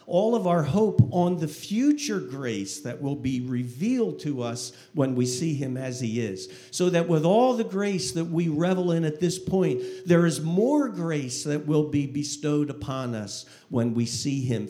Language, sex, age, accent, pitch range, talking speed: English, male, 50-69, American, 120-175 Hz, 195 wpm